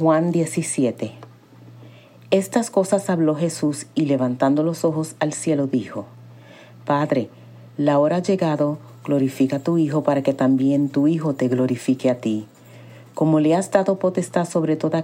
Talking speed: 150 wpm